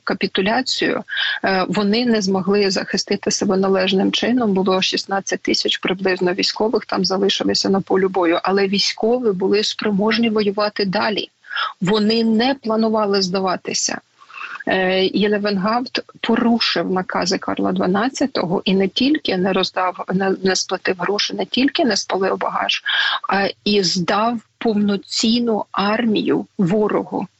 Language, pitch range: Ukrainian, 195-230 Hz